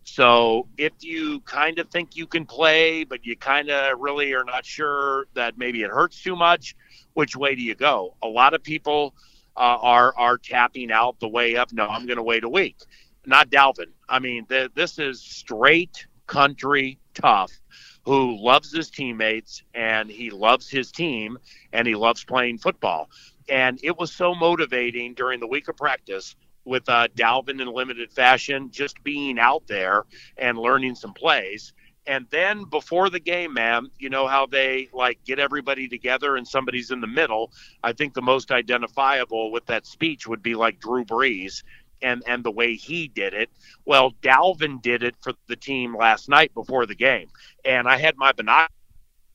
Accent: American